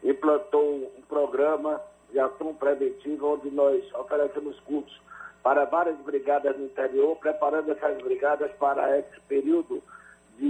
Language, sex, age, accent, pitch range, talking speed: Portuguese, male, 60-79, Brazilian, 145-190 Hz, 125 wpm